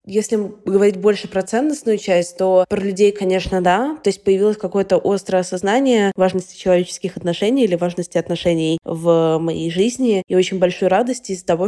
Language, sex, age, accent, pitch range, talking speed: Russian, female, 20-39, native, 180-215 Hz, 165 wpm